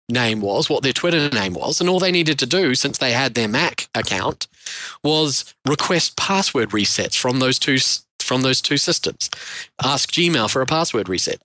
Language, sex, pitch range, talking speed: English, male, 120-155 Hz, 190 wpm